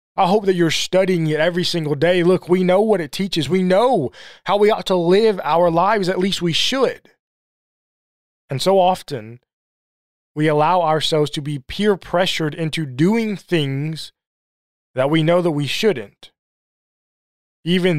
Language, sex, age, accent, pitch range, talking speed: English, male, 20-39, American, 130-175 Hz, 160 wpm